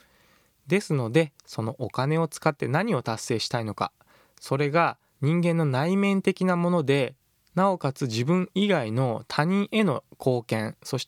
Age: 20-39